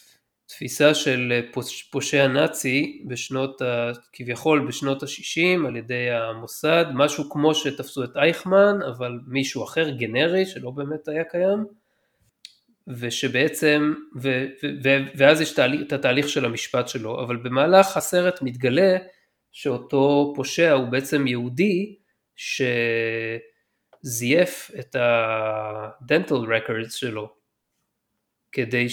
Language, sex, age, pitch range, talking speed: Hebrew, male, 20-39, 120-155 Hz, 105 wpm